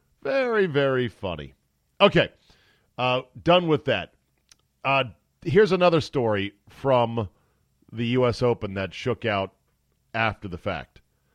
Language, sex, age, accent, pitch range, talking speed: English, male, 40-59, American, 100-135 Hz, 115 wpm